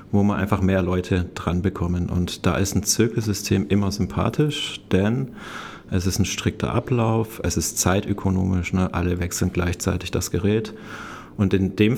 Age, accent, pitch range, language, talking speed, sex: 40-59, German, 90-105 Hz, German, 155 wpm, male